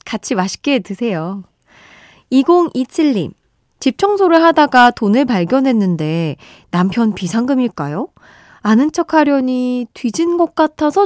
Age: 20-39